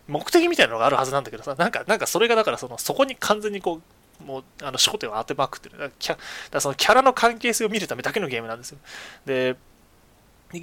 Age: 20-39